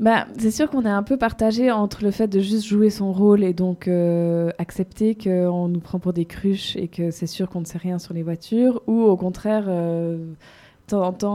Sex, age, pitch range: female, 20-39, 175-210 Hz